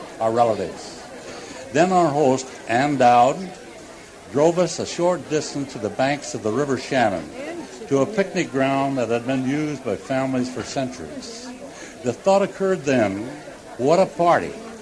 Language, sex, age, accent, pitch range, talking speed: English, male, 60-79, American, 130-165 Hz, 155 wpm